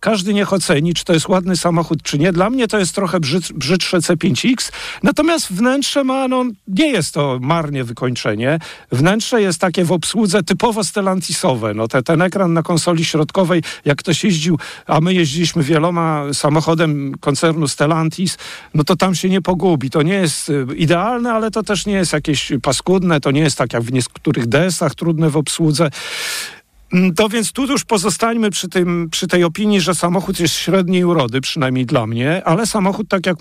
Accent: native